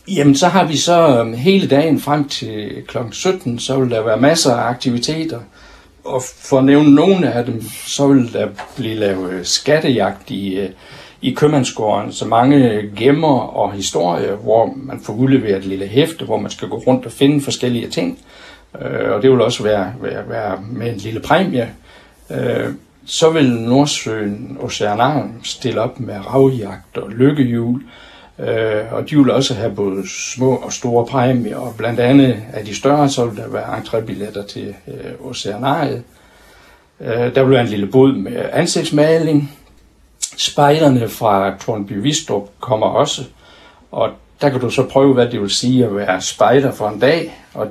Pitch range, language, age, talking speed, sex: 105-140 Hz, Danish, 60-79, 165 wpm, male